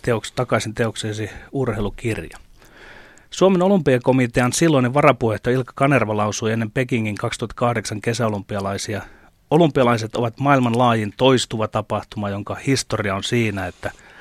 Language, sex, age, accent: Finnish, male, 30-49, native